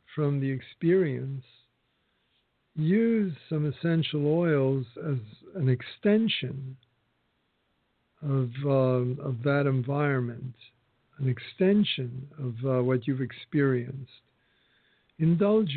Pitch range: 130-165 Hz